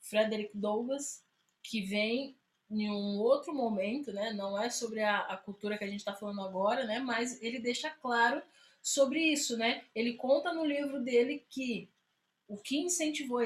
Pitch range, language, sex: 215-265 Hz, Portuguese, female